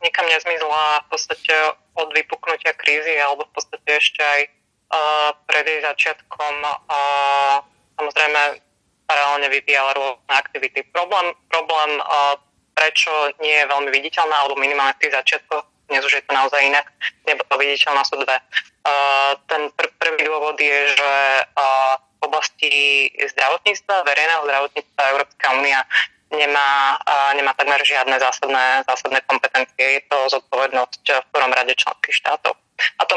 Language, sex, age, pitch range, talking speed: Slovak, female, 20-39, 140-155 Hz, 135 wpm